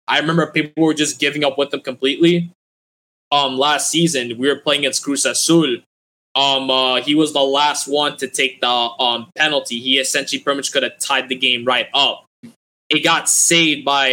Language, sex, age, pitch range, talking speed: English, male, 20-39, 130-150 Hz, 195 wpm